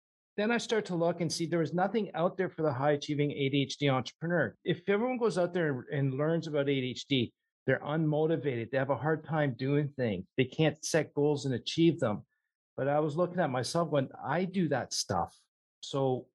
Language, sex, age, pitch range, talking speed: English, male, 50-69, 130-160 Hz, 200 wpm